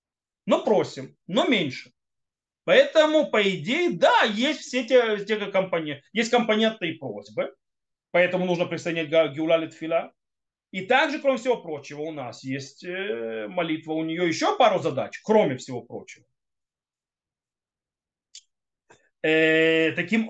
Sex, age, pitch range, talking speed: male, 30-49, 145-230 Hz, 115 wpm